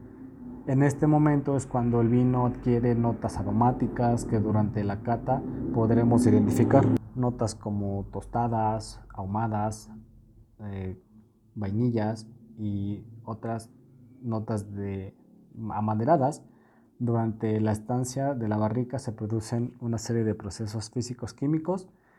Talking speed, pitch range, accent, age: 110 wpm, 110-125 Hz, Mexican, 30-49